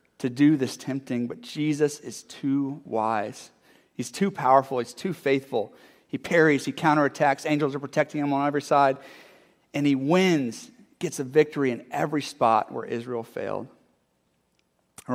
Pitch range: 120-145 Hz